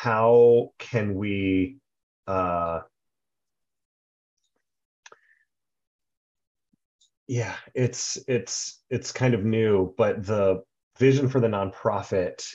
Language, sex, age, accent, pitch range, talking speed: English, male, 30-49, American, 90-115 Hz, 80 wpm